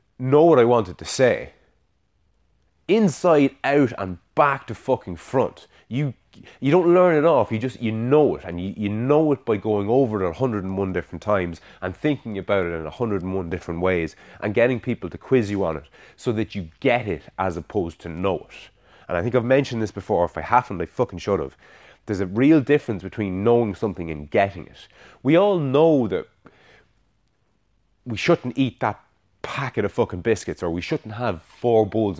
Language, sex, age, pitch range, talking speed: English, male, 30-49, 90-125 Hz, 195 wpm